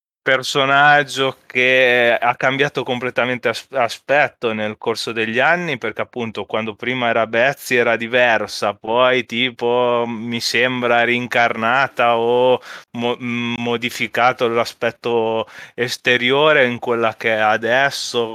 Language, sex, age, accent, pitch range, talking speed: Italian, male, 20-39, native, 110-130 Hz, 105 wpm